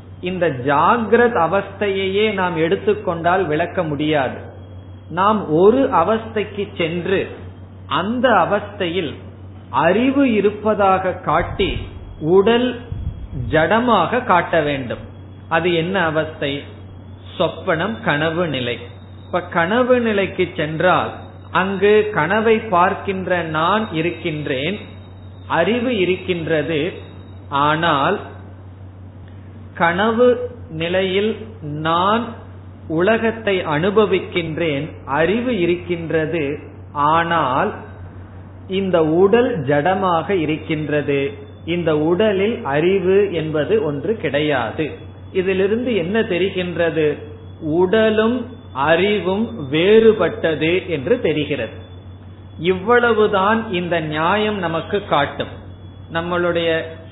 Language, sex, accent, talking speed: Tamil, male, native, 65 wpm